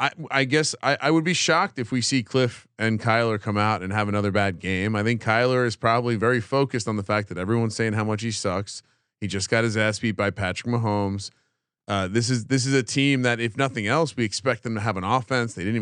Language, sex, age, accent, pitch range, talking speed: English, male, 30-49, American, 110-135 Hz, 255 wpm